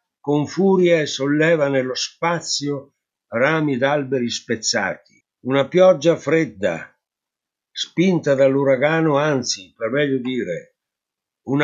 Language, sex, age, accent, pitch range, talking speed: Italian, male, 60-79, native, 120-155 Hz, 100 wpm